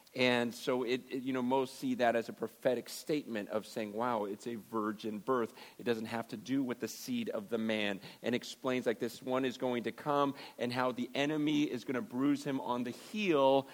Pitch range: 125-150 Hz